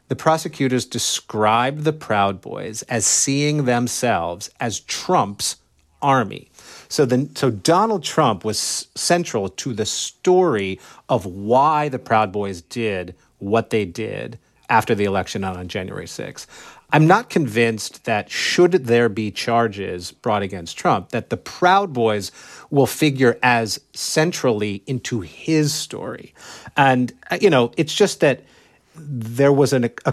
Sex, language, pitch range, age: male, English, 105-145 Hz, 30-49